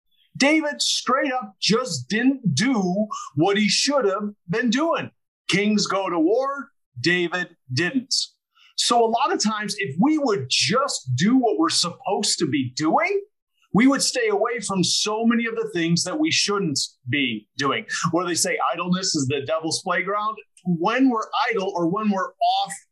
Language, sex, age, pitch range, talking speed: English, male, 30-49, 160-235 Hz, 170 wpm